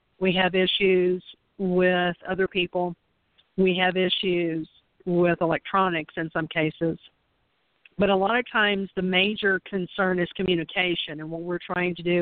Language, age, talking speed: English, 50-69, 145 wpm